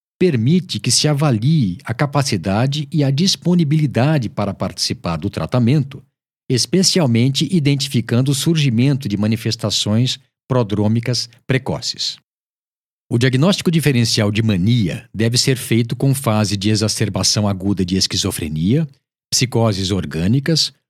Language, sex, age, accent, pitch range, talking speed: Portuguese, male, 50-69, Brazilian, 105-140 Hz, 110 wpm